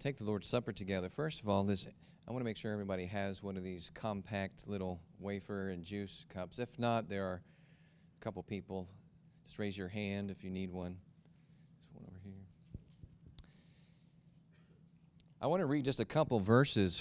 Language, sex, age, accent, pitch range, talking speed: English, male, 40-59, American, 105-155 Hz, 185 wpm